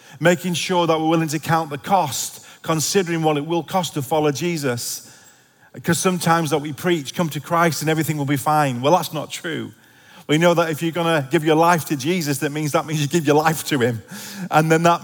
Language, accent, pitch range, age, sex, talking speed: English, British, 145-175 Hz, 40-59, male, 230 wpm